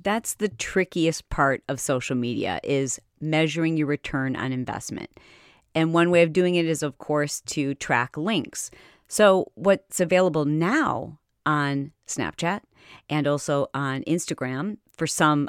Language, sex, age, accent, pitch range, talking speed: English, female, 40-59, American, 150-195 Hz, 145 wpm